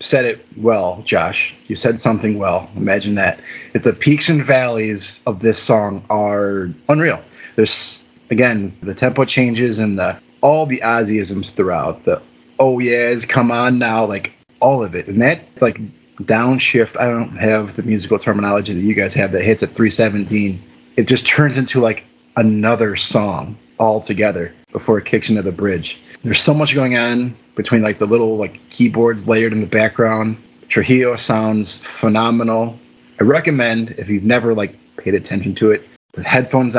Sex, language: male, English